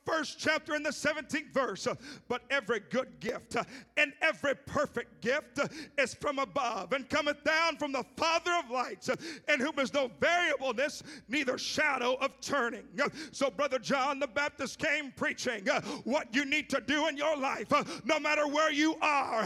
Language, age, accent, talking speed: English, 50-69, American, 165 wpm